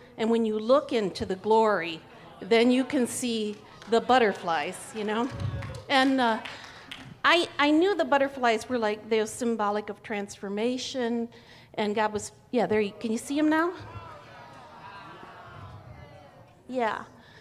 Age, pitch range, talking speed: 50-69, 200-265 Hz, 140 wpm